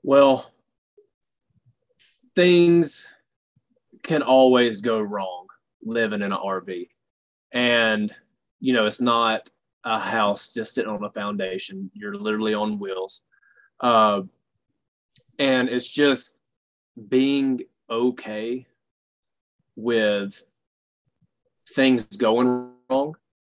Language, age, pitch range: English, 20-39, 105-130 Hz